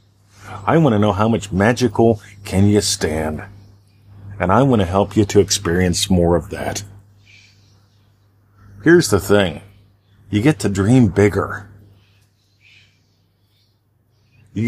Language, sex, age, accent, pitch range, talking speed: English, male, 50-69, American, 100-105 Hz, 125 wpm